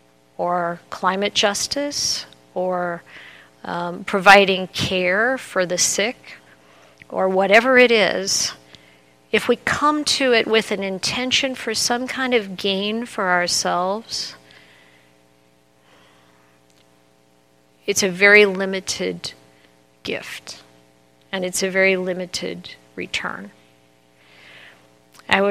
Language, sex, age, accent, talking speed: English, female, 50-69, American, 95 wpm